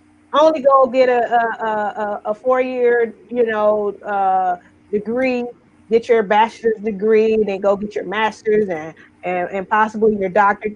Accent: American